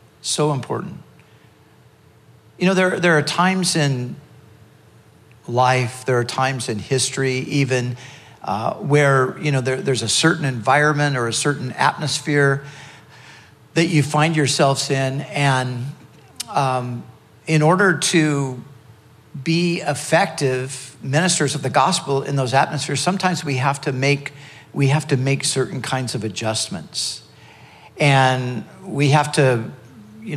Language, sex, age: English, male, 50-69